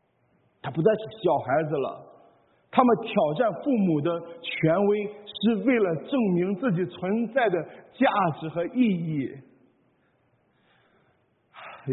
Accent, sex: native, male